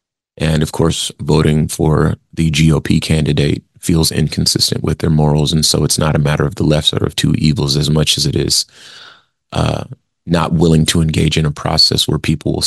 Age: 30-49